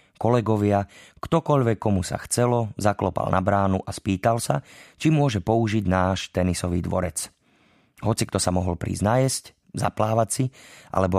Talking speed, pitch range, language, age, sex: 135 wpm, 90-115 Hz, Slovak, 30-49, male